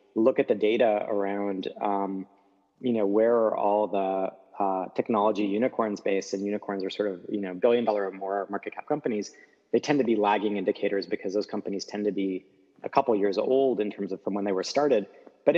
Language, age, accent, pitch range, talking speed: English, 20-39, American, 95-105 Hz, 210 wpm